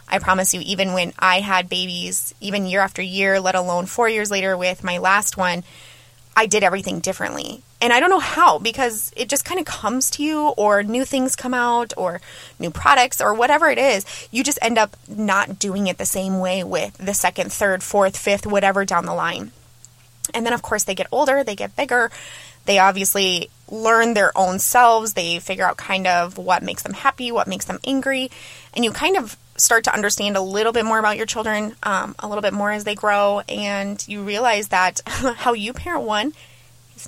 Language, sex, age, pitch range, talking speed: English, female, 20-39, 185-235 Hz, 210 wpm